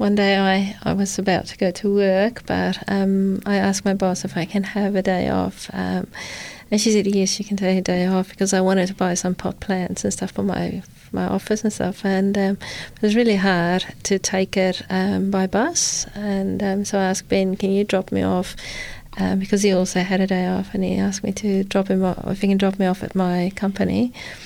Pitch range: 185-200 Hz